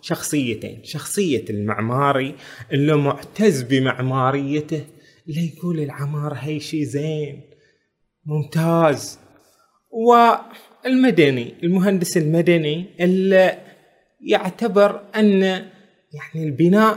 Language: Arabic